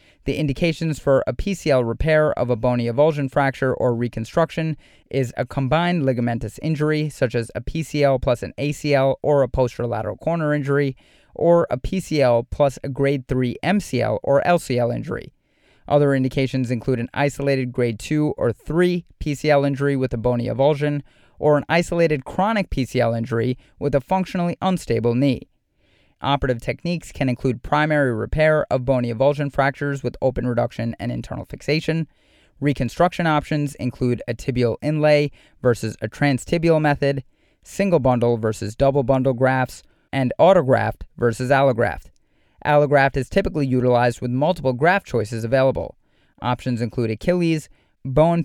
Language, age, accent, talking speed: English, 30-49, American, 145 wpm